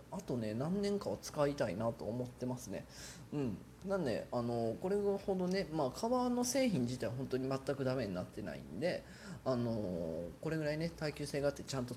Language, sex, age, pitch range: Japanese, male, 20-39, 115-150 Hz